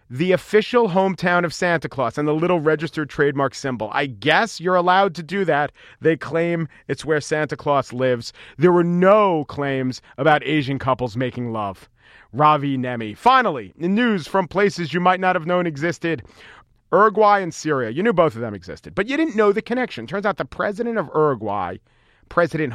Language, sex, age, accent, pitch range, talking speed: English, male, 40-59, American, 145-210 Hz, 185 wpm